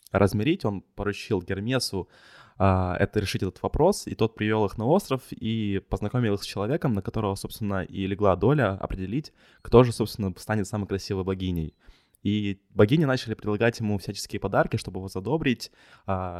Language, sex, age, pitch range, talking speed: Ukrainian, male, 20-39, 95-110 Hz, 155 wpm